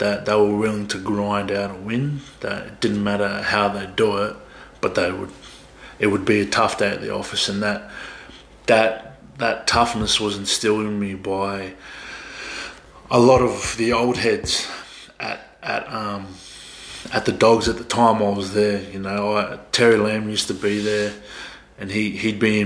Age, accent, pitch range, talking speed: 20-39, Australian, 100-115 Hz, 190 wpm